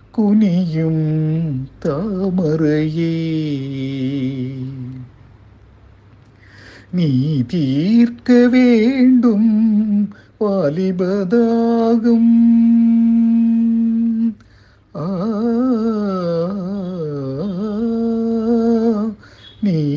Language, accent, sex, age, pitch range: Tamil, native, male, 50-69, 135-220 Hz